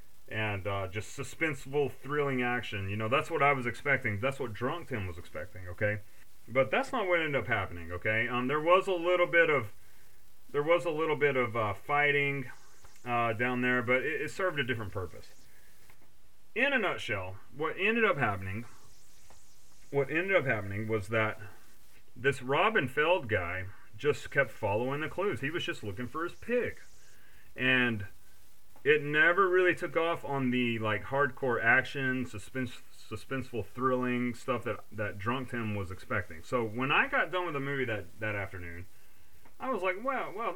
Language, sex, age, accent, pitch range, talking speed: English, male, 30-49, American, 105-140 Hz, 180 wpm